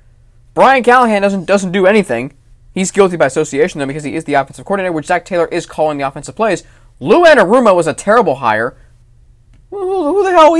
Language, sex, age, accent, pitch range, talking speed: English, male, 20-39, American, 155-230 Hz, 195 wpm